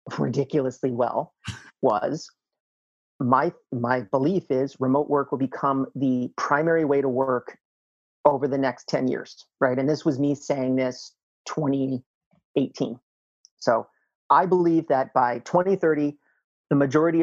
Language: English